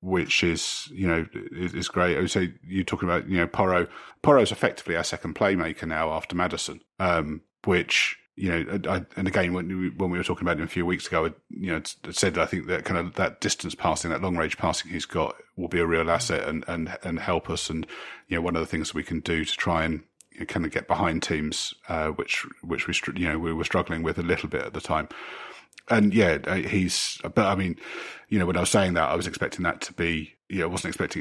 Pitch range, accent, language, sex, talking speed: 80-90 Hz, British, English, male, 250 wpm